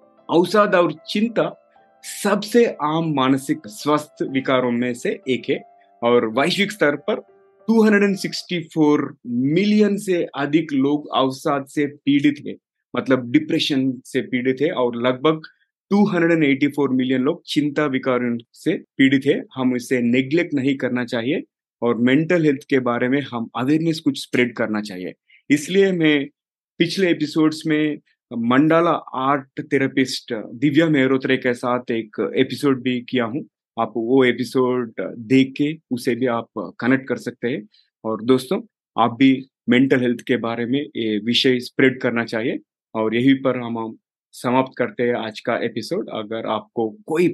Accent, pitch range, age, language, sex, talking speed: native, 125-155 Hz, 30-49, Hindi, male, 140 wpm